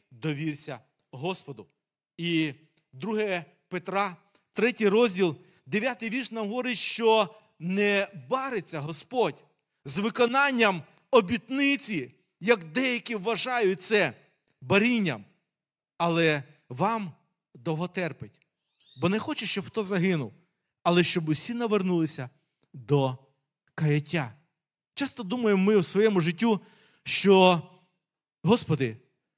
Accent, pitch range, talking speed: native, 145-205 Hz, 95 wpm